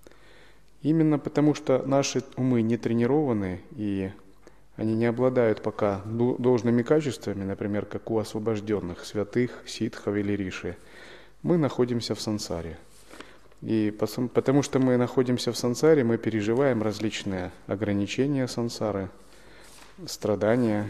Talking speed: 110 wpm